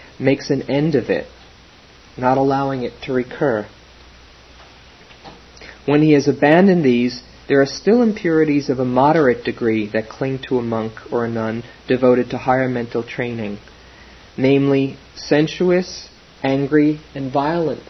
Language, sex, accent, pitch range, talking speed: English, male, American, 115-145 Hz, 135 wpm